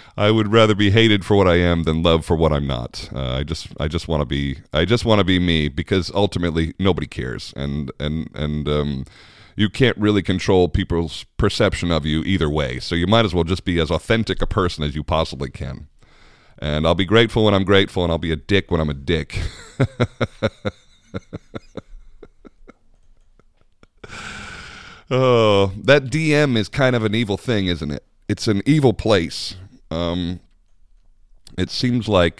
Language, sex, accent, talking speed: English, male, American, 180 wpm